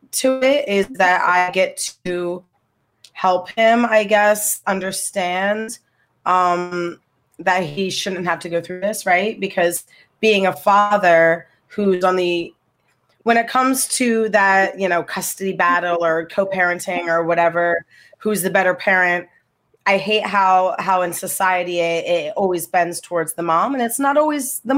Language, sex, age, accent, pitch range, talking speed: English, female, 30-49, American, 170-195 Hz, 155 wpm